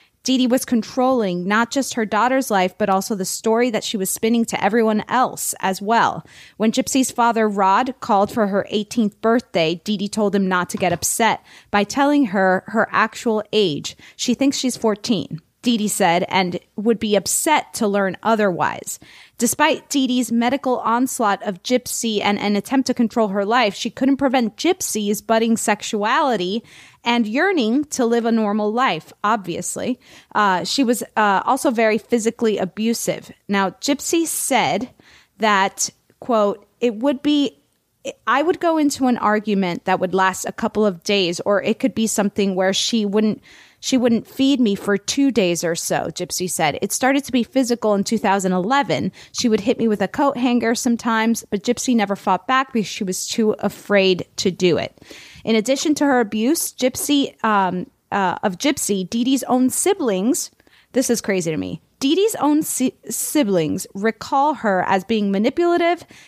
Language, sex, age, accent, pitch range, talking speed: English, female, 20-39, American, 200-255 Hz, 170 wpm